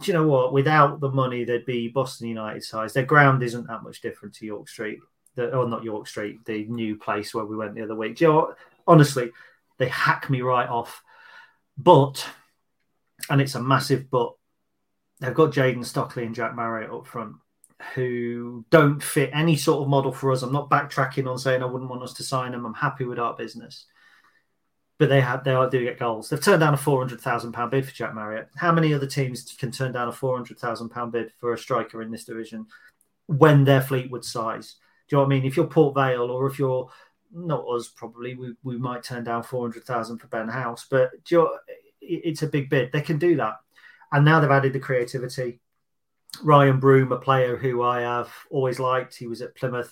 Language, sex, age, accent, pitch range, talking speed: English, male, 30-49, British, 120-145 Hz, 215 wpm